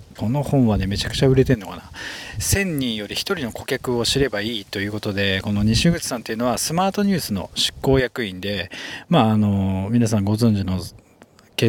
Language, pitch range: Japanese, 105-135 Hz